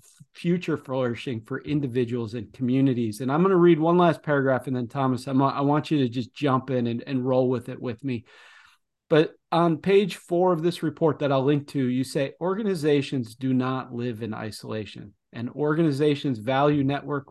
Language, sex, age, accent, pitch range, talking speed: English, male, 40-59, American, 130-155 Hz, 185 wpm